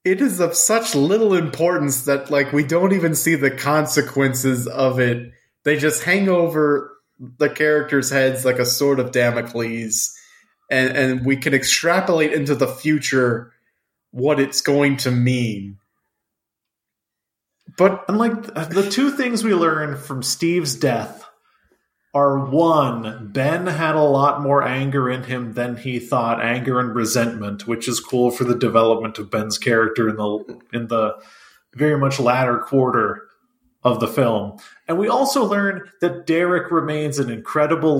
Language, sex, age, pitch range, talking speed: English, male, 20-39, 125-160 Hz, 150 wpm